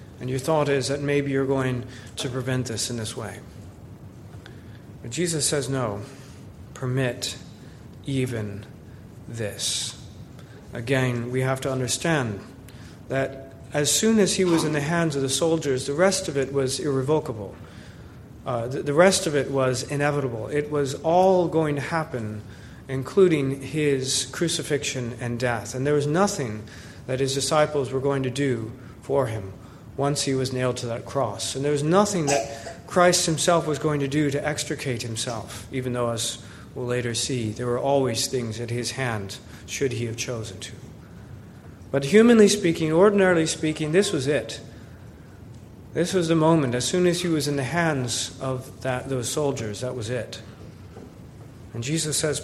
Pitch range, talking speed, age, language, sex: 115-145 Hz, 165 wpm, 40-59, English, male